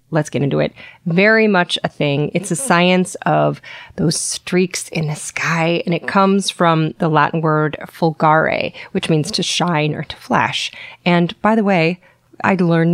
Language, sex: English, female